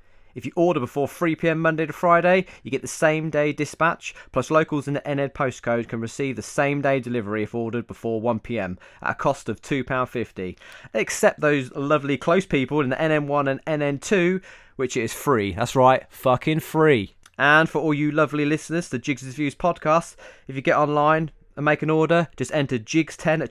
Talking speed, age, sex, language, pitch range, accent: 190 wpm, 20-39, male, English, 125-155 Hz, British